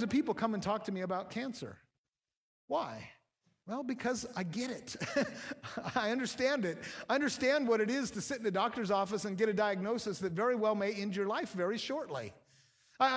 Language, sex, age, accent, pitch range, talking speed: English, male, 50-69, American, 200-260 Hz, 195 wpm